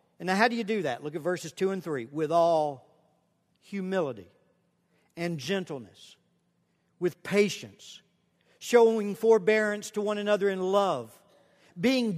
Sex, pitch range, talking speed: male, 195-265 Hz, 140 wpm